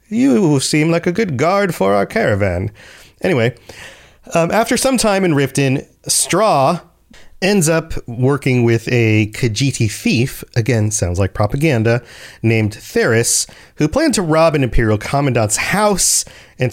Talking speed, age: 140 wpm, 30-49